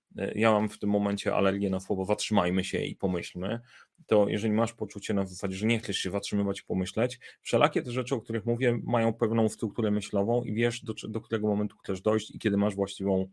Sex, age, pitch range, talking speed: male, 30-49, 100-120 Hz, 210 wpm